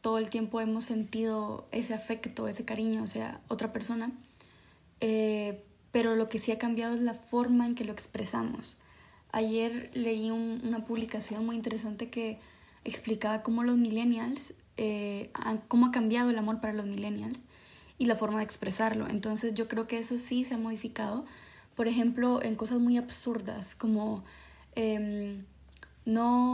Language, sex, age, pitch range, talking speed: Spanish, female, 20-39, 220-235 Hz, 165 wpm